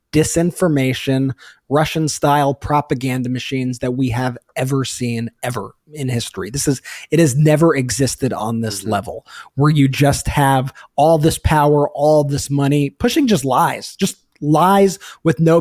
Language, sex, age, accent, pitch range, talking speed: English, male, 20-39, American, 130-160 Hz, 150 wpm